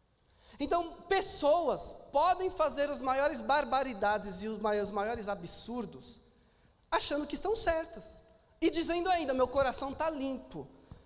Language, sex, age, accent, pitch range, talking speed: Portuguese, male, 20-39, Brazilian, 245-345 Hz, 120 wpm